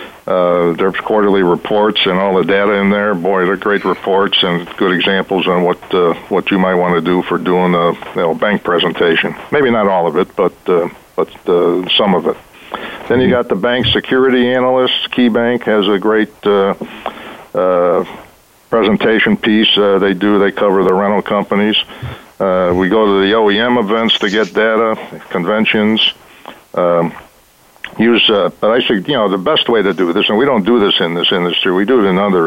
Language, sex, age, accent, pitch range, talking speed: English, male, 60-79, American, 90-110 Hz, 195 wpm